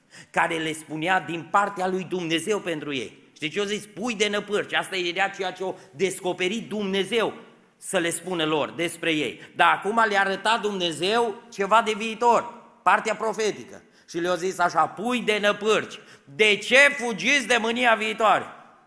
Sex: male